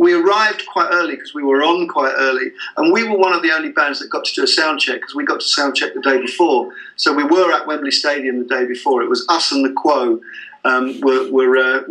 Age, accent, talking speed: 50-69, British, 265 wpm